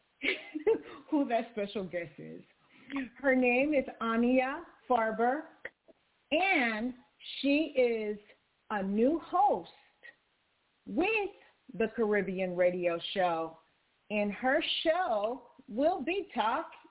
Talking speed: 95 wpm